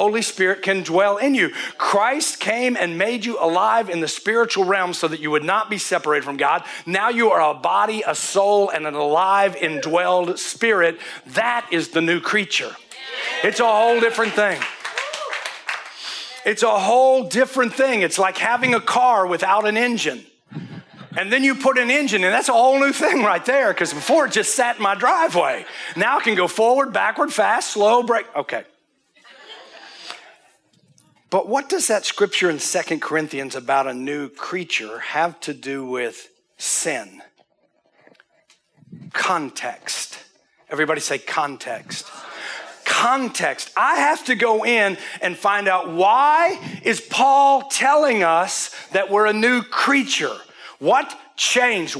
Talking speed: 155 wpm